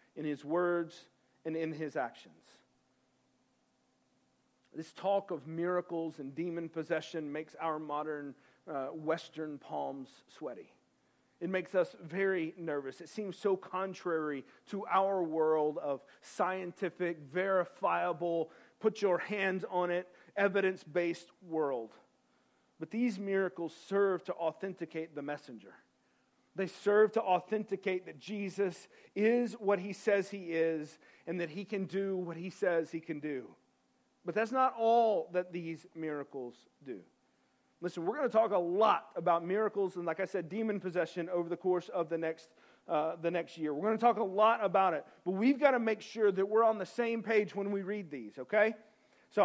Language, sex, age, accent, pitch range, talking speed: English, male, 40-59, American, 165-205 Hz, 155 wpm